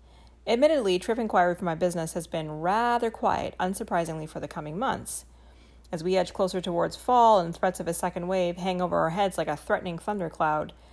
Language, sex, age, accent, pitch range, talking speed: English, female, 40-59, American, 165-230 Hz, 190 wpm